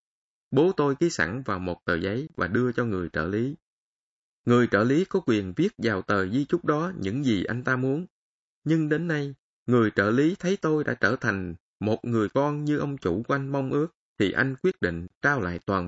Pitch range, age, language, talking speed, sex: 100-150 Hz, 20-39, Vietnamese, 220 wpm, male